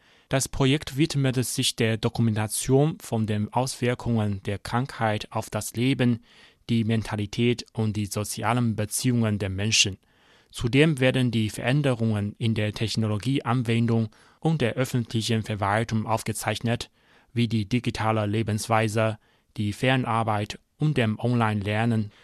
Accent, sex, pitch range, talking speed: German, male, 110-130 Hz, 115 wpm